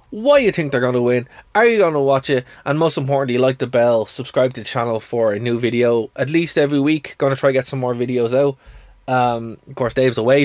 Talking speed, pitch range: 260 wpm, 115-140 Hz